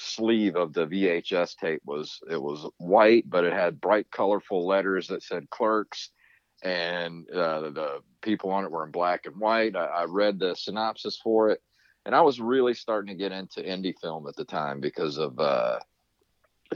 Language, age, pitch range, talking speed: English, 40-59, 90-110 Hz, 190 wpm